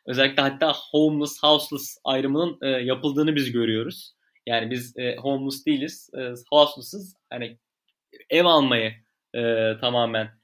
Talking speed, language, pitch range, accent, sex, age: 120 wpm, Turkish, 120-150 Hz, native, male, 30-49